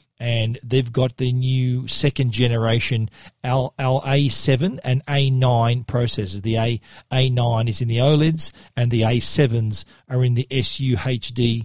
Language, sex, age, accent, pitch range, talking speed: English, male, 40-59, Australian, 120-140 Hz, 120 wpm